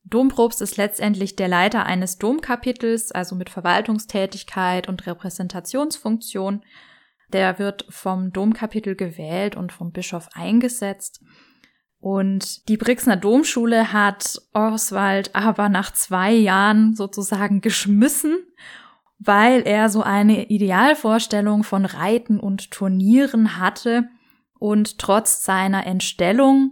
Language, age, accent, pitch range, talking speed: German, 10-29, German, 185-225 Hz, 105 wpm